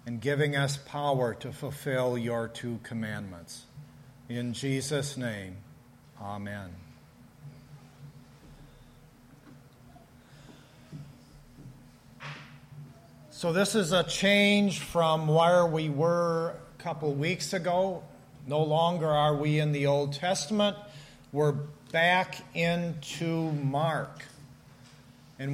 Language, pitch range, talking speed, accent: English, 135-170 Hz, 90 wpm, American